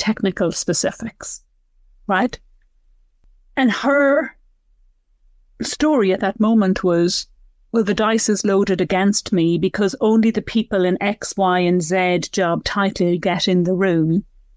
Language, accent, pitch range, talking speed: English, British, 185-225 Hz, 130 wpm